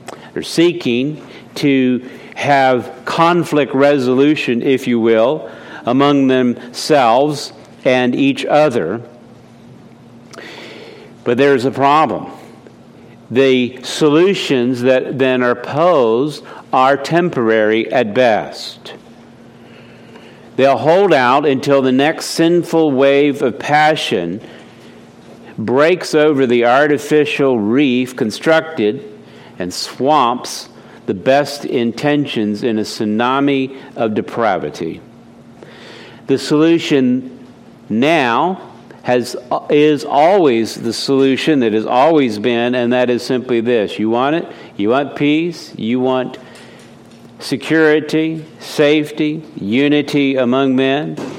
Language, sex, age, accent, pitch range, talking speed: English, male, 60-79, American, 120-145 Hz, 95 wpm